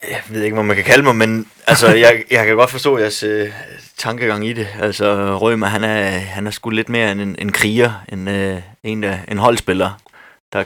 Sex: male